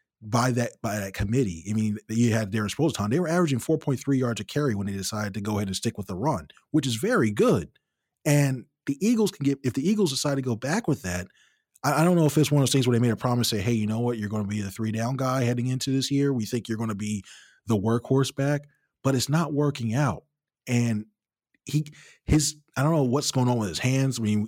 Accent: American